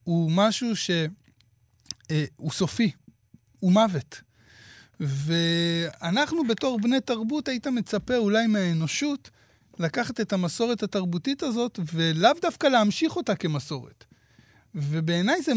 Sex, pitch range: male, 145-220 Hz